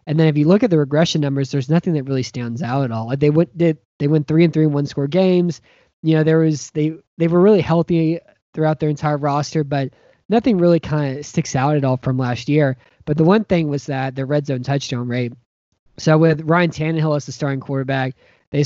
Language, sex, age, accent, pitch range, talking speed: English, male, 20-39, American, 130-150 Hz, 240 wpm